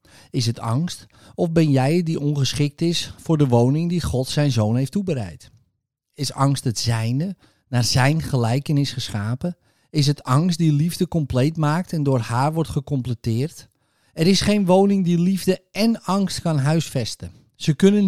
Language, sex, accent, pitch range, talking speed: Dutch, male, Dutch, 125-165 Hz, 165 wpm